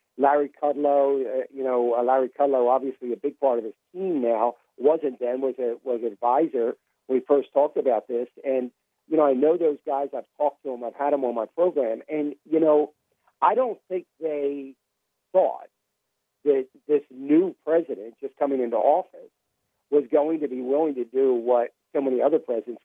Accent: American